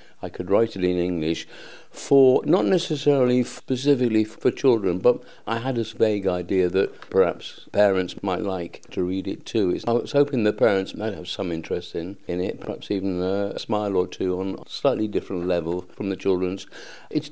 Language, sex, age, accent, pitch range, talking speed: English, male, 50-69, British, 100-125 Hz, 195 wpm